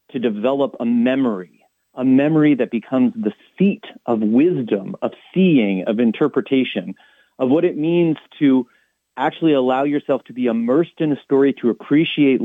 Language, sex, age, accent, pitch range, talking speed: English, male, 40-59, American, 120-160 Hz, 155 wpm